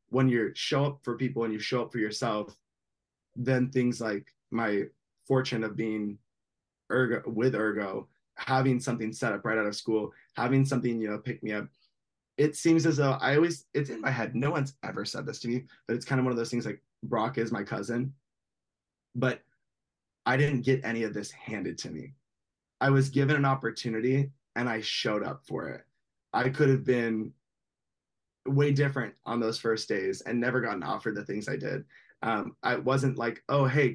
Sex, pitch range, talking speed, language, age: male, 115-135 Hz, 195 wpm, English, 20-39